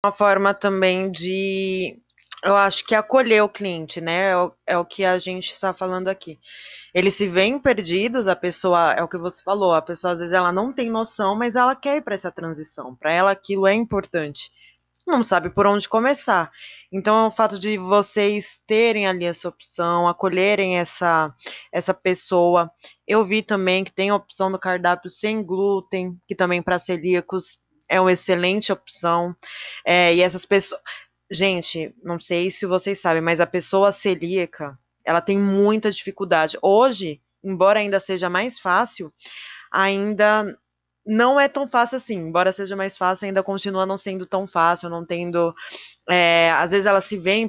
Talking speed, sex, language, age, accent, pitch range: 175 wpm, female, Portuguese, 20-39, Brazilian, 175-205 Hz